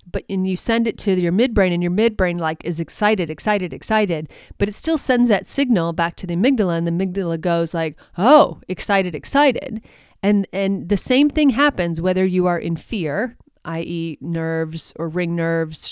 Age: 30-49